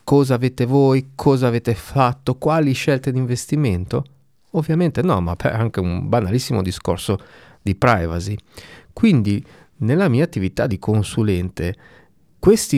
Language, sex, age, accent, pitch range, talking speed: Italian, male, 40-59, native, 100-135 Hz, 125 wpm